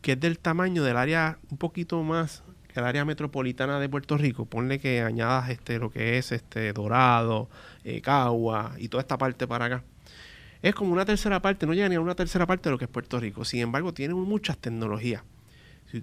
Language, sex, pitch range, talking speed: Spanish, male, 120-170 Hz, 210 wpm